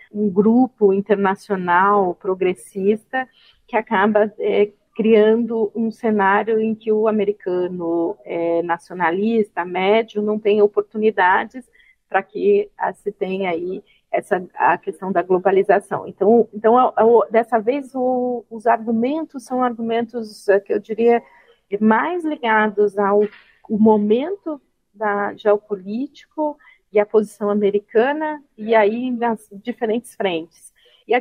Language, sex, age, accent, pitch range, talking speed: Portuguese, female, 40-59, Brazilian, 205-240 Hz, 125 wpm